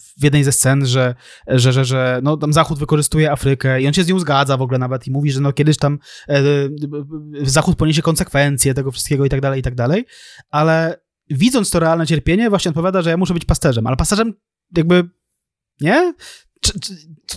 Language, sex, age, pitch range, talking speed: Polish, male, 20-39, 145-185 Hz, 205 wpm